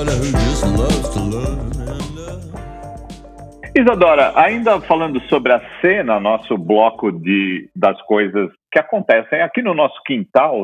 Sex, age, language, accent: male, 50-69, Portuguese, Brazilian